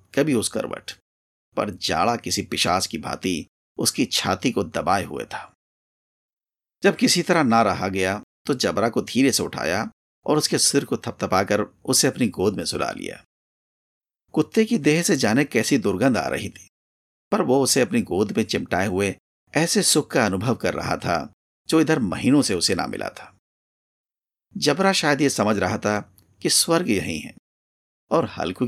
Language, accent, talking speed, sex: Hindi, native, 175 wpm, male